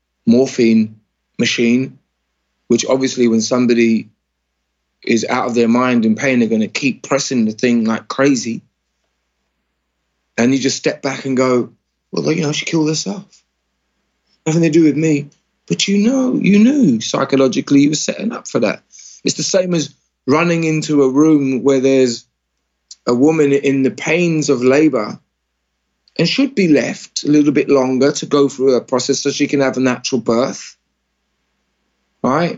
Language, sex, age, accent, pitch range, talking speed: English, male, 20-39, British, 125-190 Hz, 165 wpm